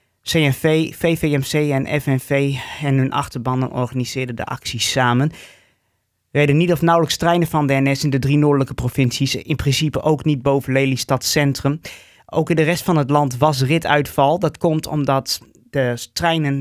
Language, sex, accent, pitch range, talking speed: Dutch, male, Dutch, 130-155 Hz, 165 wpm